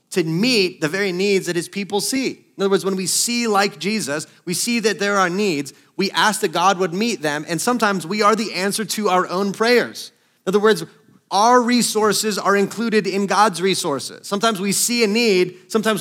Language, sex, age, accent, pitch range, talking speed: English, male, 30-49, American, 190-225 Hz, 210 wpm